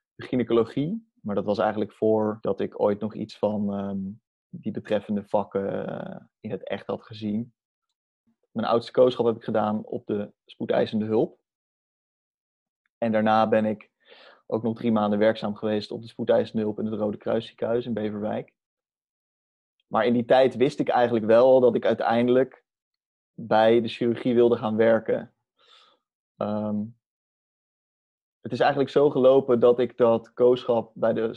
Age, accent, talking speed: 20-39, Dutch, 155 wpm